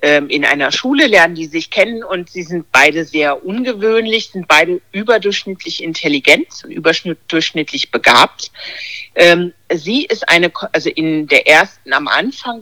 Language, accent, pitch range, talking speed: German, German, 160-205 Hz, 140 wpm